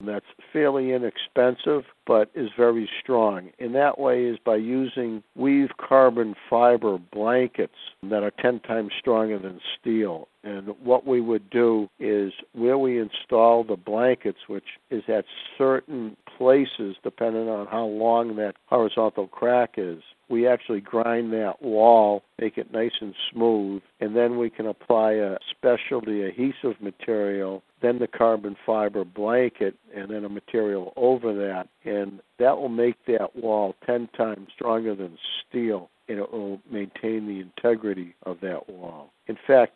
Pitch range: 100-120 Hz